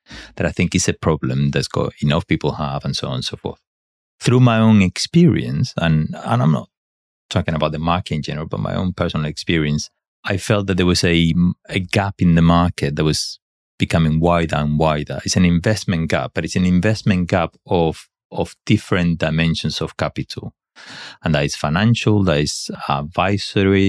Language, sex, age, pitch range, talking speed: English, male, 30-49, 80-95 Hz, 190 wpm